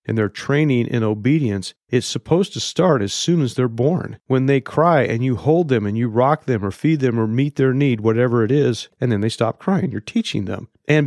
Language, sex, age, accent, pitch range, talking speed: English, male, 40-59, American, 105-130 Hz, 240 wpm